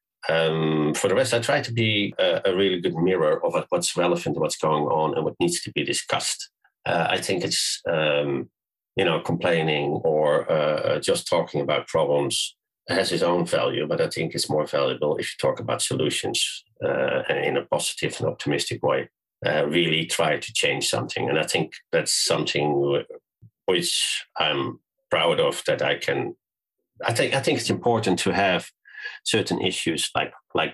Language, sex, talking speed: English, male, 175 wpm